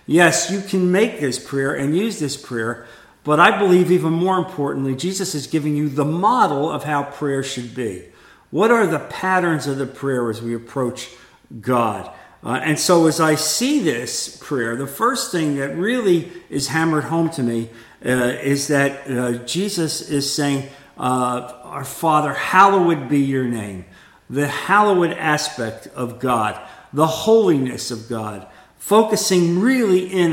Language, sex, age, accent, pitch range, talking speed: English, male, 50-69, American, 130-175 Hz, 160 wpm